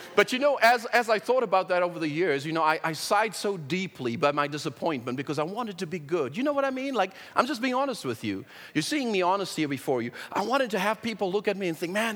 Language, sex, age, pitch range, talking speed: English, male, 40-59, 145-205 Hz, 285 wpm